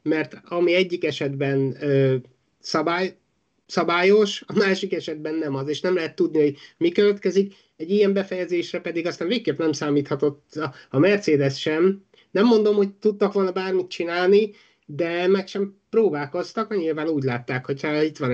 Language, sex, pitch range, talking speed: Hungarian, male, 150-190 Hz, 155 wpm